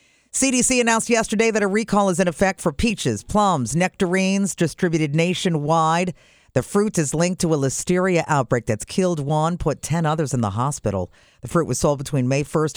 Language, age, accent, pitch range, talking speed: English, 50-69, American, 135-190 Hz, 185 wpm